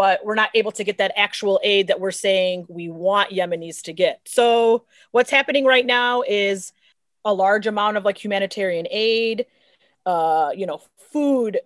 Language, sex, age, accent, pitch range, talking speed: English, female, 30-49, American, 200-245 Hz, 175 wpm